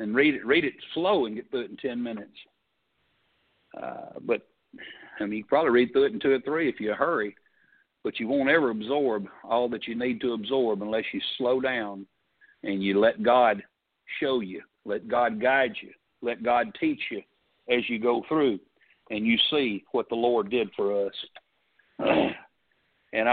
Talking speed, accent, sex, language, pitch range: 190 wpm, American, male, English, 115-150 Hz